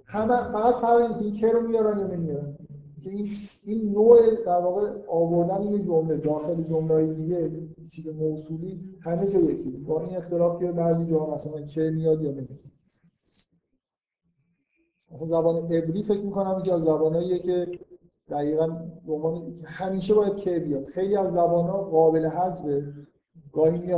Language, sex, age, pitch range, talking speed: Persian, male, 50-69, 160-195 Hz, 155 wpm